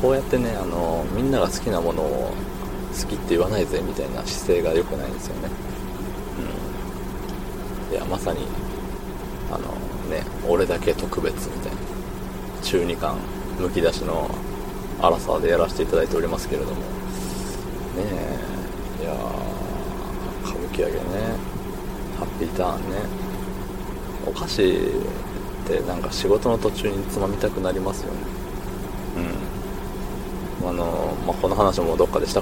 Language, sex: Japanese, male